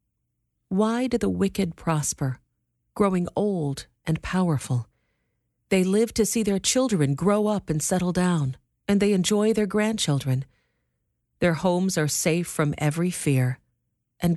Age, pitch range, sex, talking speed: 40-59, 140-205 Hz, female, 140 wpm